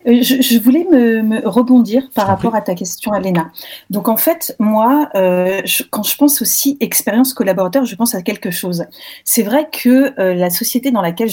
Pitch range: 190-260 Hz